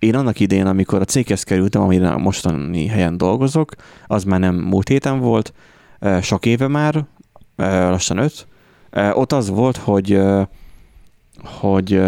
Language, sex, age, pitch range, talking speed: Hungarian, male, 30-49, 95-110 Hz, 135 wpm